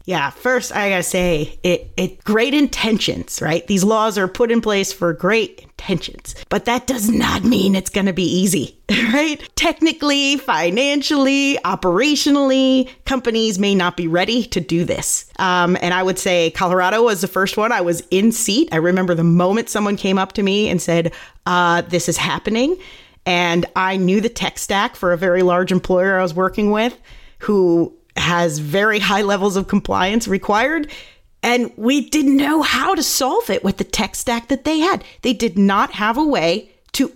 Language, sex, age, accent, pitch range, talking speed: English, female, 30-49, American, 180-240 Hz, 185 wpm